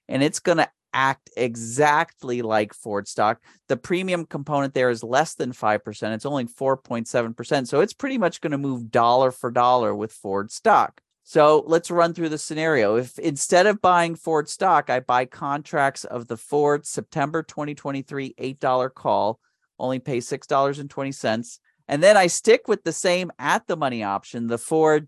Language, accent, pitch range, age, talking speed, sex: English, American, 125-165 Hz, 40-59, 165 wpm, male